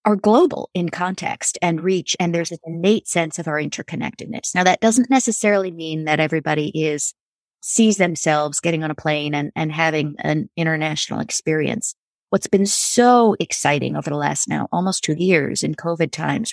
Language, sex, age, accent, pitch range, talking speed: English, female, 30-49, American, 160-190 Hz, 180 wpm